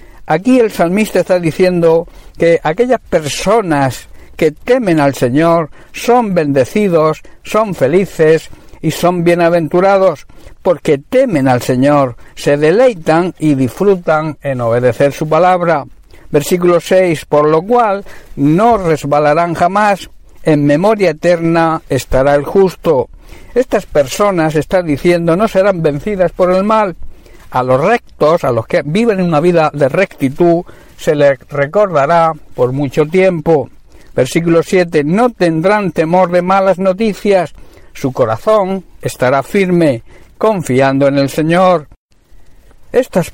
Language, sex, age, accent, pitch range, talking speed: Spanish, male, 60-79, Spanish, 145-190 Hz, 125 wpm